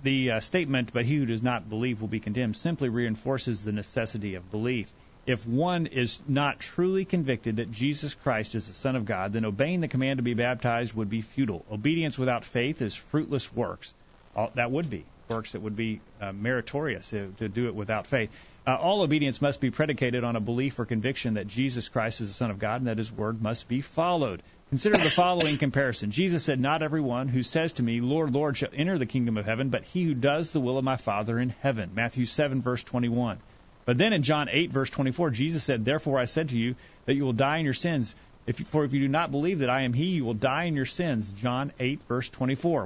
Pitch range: 115-145 Hz